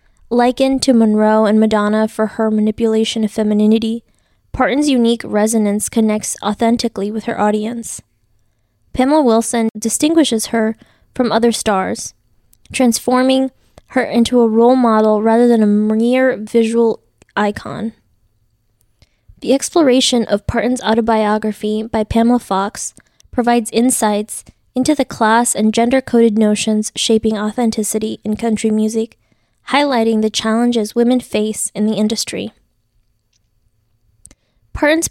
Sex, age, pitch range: female, 20-39, 210-245 Hz